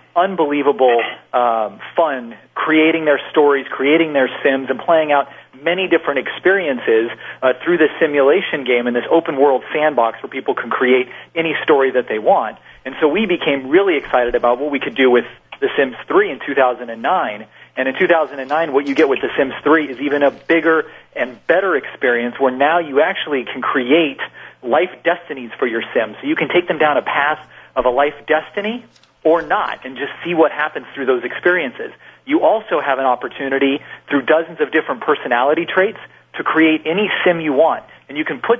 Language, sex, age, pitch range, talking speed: English, male, 40-59, 130-165 Hz, 190 wpm